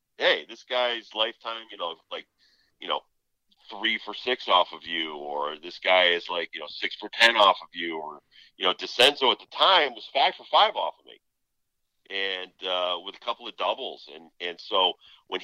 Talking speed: 205 wpm